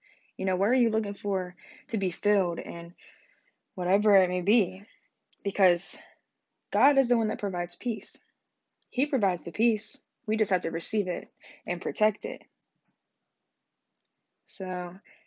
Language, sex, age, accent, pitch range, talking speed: English, female, 20-39, American, 180-225 Hz, 145 wpm